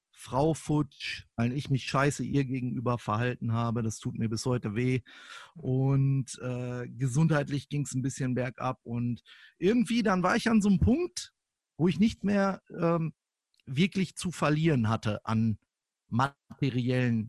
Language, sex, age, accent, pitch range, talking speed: English, male, 50-69, German, 125-175 Hz, 155 wpm